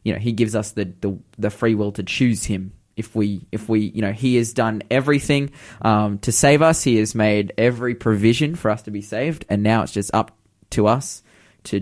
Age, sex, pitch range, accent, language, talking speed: 20-39, male, 105-125 Hz, Australian, English, 230 wpm